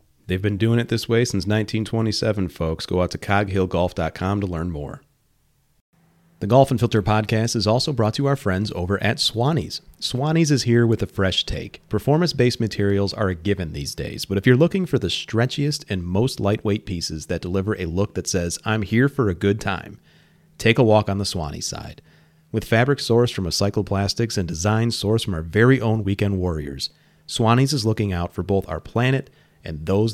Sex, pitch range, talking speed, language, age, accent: male, 85-115 Hz, 200 wpm, English, 30-49, American